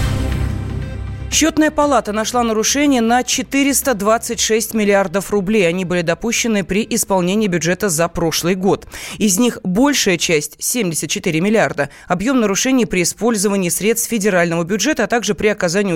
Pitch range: 170-225 Hz